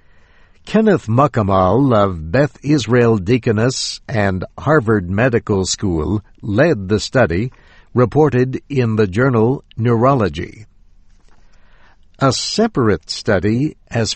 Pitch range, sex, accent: 100-135 Hz, male, American